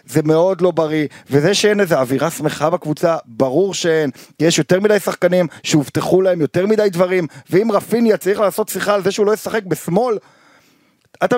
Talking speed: 175 wpm